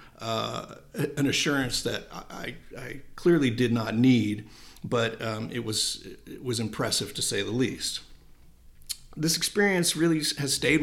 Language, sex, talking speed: English, male, 145 wpm